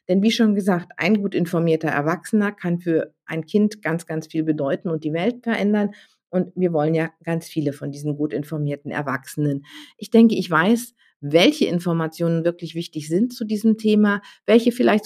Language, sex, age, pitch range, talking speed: German, female, 50-69, 160-210 Hz, 180 wpm